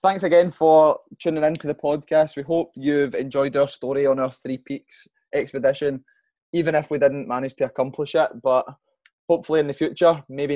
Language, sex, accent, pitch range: English, male, British, 120-150 Hz